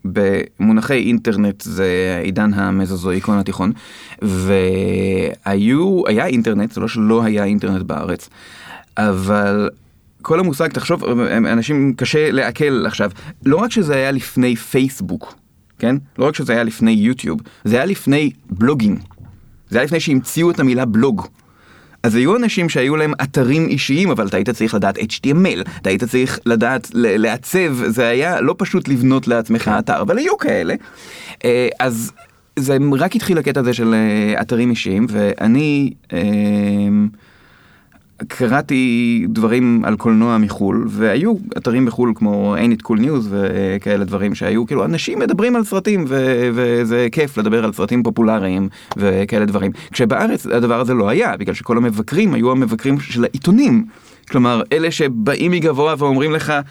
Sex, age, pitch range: male, 30-49, 105-140 Hz